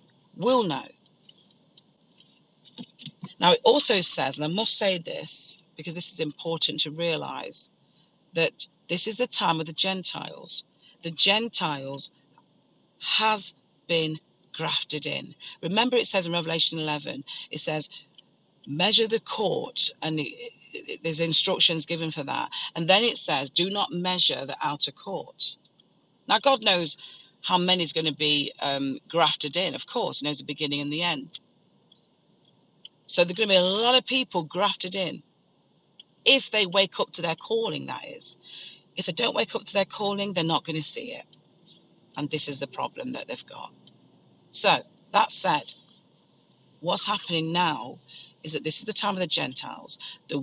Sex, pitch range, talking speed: female, 155-200 Hz, 165 wpm